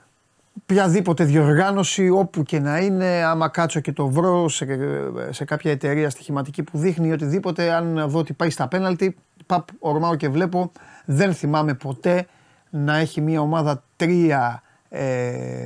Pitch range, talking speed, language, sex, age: 145-175 Hz, 145 wpm, Greek, male, 30-49